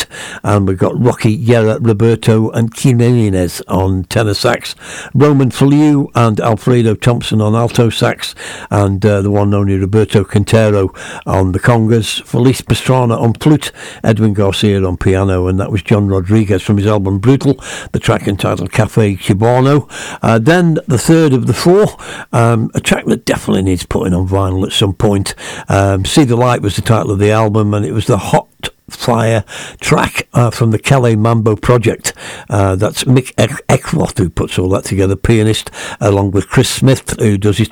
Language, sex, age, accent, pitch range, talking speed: English, male, 60-79, British, 100-120 Hz, 175 wpm